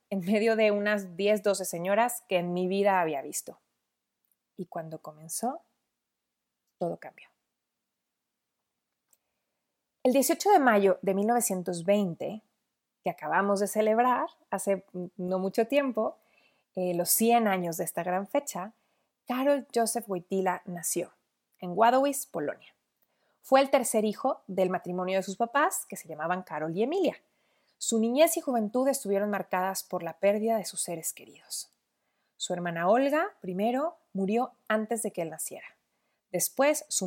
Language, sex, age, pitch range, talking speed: Spanish, female, 30-49, 185-235 Hz, 140 wpm